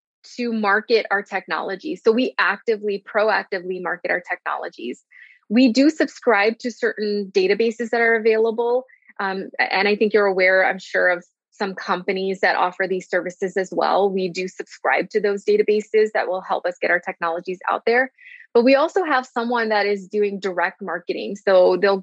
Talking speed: 175 wpm